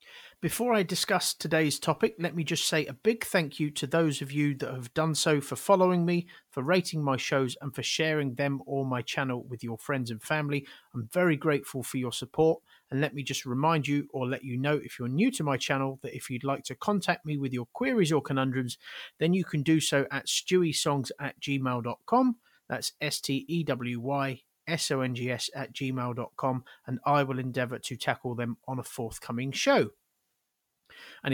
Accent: British